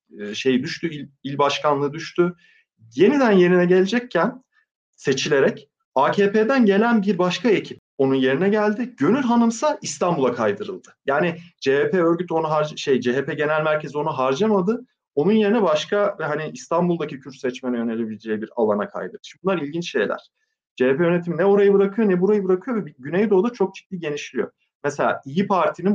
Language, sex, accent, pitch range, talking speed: Turkish, male, native, 130-195 Hz, 150 wpm